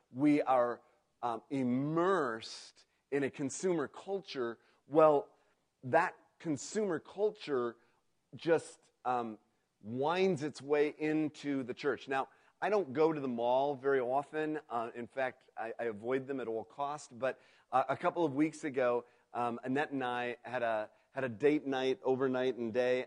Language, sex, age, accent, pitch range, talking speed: English, male, 40-59, American, 125-150 Hz, 155 wpm